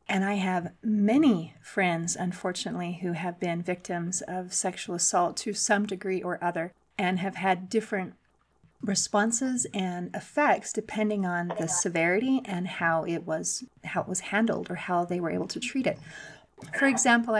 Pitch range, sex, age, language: 180-215 Hz, female, 30-49, English